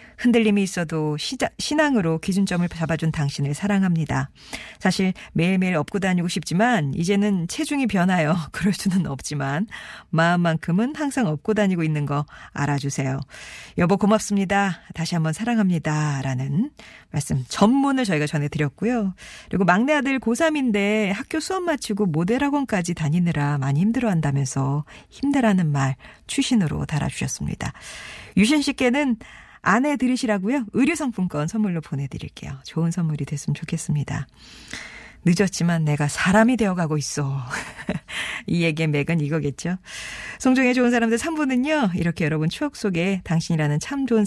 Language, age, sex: Korean, 40-59, female